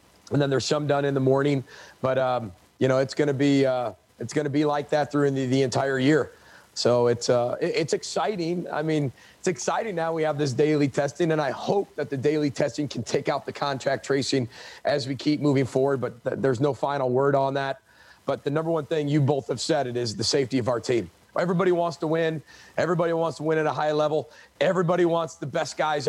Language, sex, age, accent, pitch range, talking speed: English, male, 30-49, American, 135-160 Hz, 225 wpm